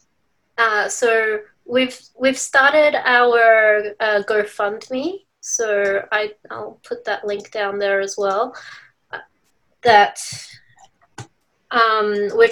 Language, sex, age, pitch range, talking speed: English, female, 20-39, 200-245 Hz, 100 wpm